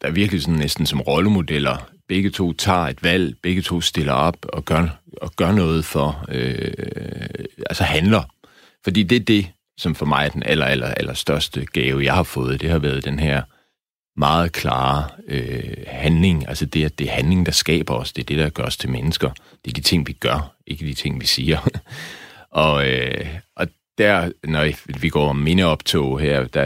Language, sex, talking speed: Danish, male, 200 wpm